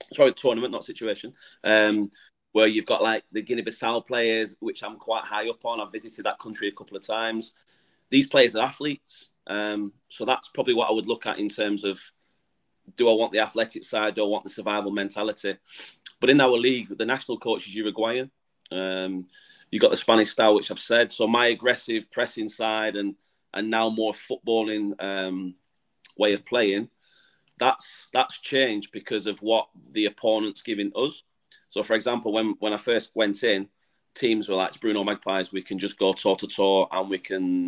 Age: 30-49